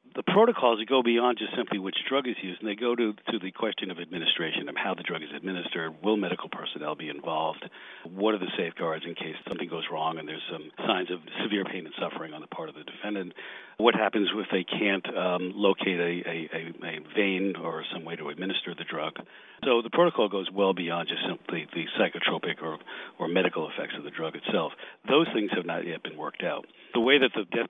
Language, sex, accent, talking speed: English, male, American, 220 wpm